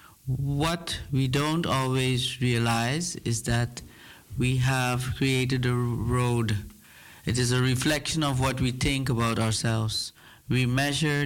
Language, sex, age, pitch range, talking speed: Dutch, male, 50-69, 120-140 Hz, 130 wpm